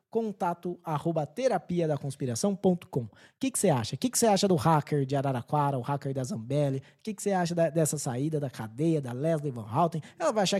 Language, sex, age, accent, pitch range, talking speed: Portuguese, male, 20-39, Brazilian, 155-205 Hz, 215 wpm